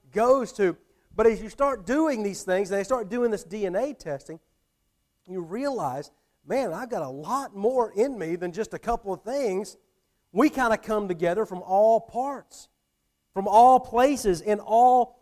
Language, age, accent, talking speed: English, 40-59, American, 180 wpm